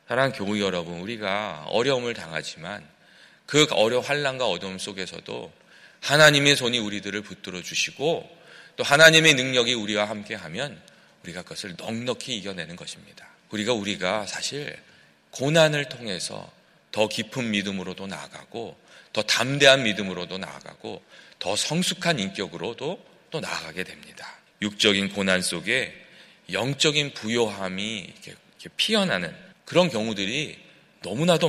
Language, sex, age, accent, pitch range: Korean, male, 40-59, native, 95-135 Hz